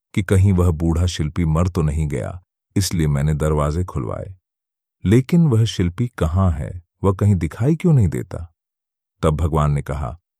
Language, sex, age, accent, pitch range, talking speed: Hindi, male, 40-59, native, 80-105 Hz, 160 wpm